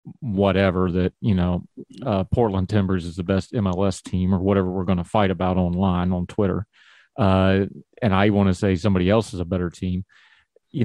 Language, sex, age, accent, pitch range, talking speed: English, male, 40-59, American, 95-115 Hz, 195 wpm